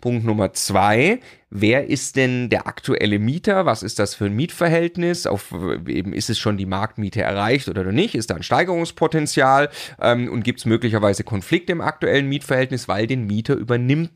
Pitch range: 105-145 Hz